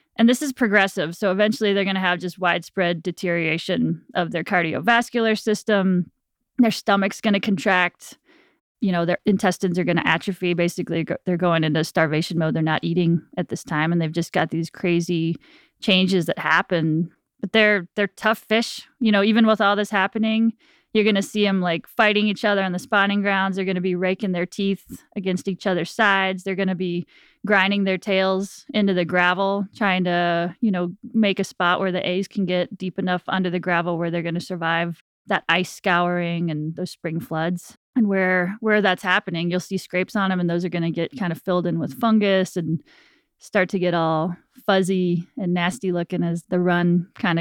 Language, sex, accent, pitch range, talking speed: English, female, American, 175-205 Hz, 205 wpm